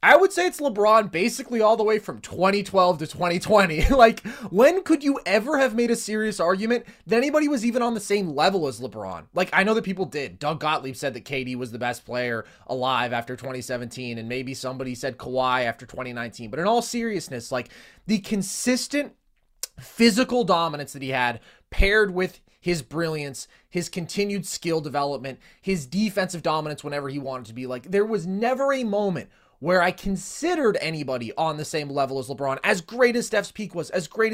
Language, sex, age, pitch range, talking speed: English, male, 20-39, 135-205 Hz, 190 wpm